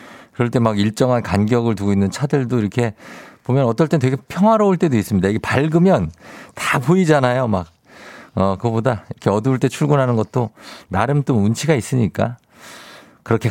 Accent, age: native, 50-69